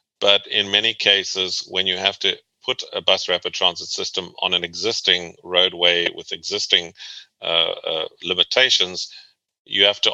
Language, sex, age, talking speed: English, male, 40-59, 155 wpm